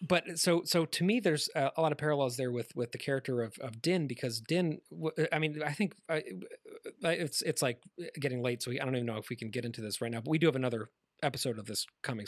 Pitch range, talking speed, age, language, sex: 120-155 Hz, 255 wpm, 30-49, English, male